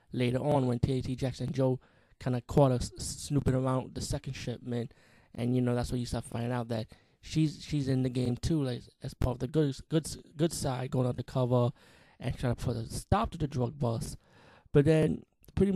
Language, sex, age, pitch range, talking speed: English, male, 20-39, 125-145 Hz, 215 wpm